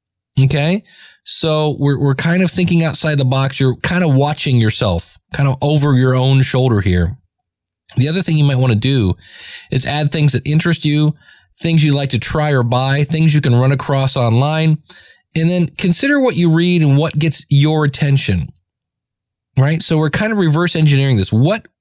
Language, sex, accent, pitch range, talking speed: English, male, American, 130-165 Hz, 190 wpm